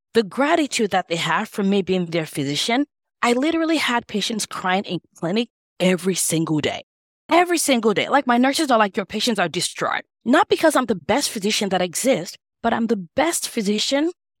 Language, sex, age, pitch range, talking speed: English, female, 20-39, 185-280 Hz, 185 wpm